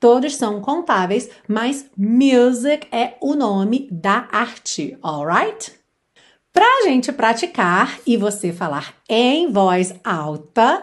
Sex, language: female, Portuguese